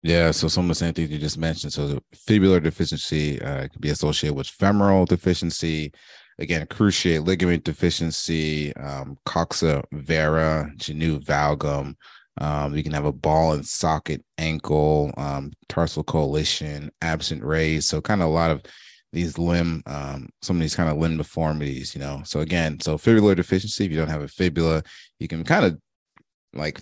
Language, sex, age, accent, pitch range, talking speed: English, male, 30-49, American, 75-85 Hz, 175 wpm